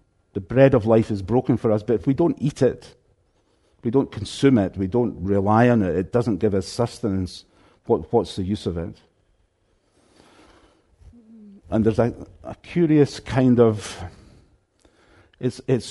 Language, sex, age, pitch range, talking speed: English, male, 50-69, 100-125 Hz, 160 wpm